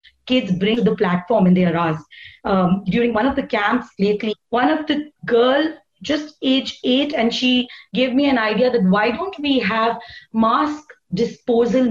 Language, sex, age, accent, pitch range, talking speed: English, female, 30-49, Indian, 205-265 Hz, 170 wpm